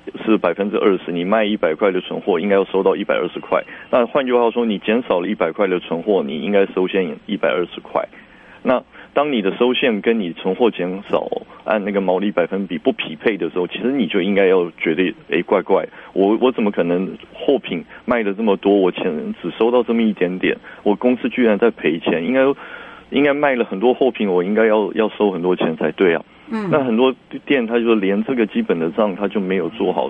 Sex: male